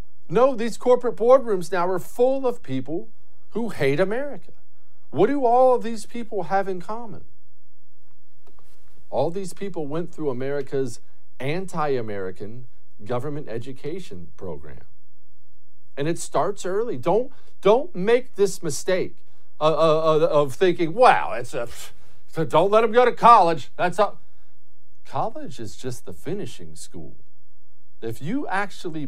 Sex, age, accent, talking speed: male, 50-69, American, 130 wpm